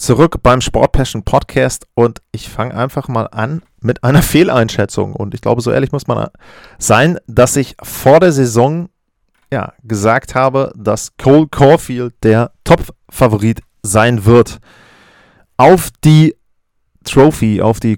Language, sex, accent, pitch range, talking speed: German, male, German, 110-135 Hz, 135 wpm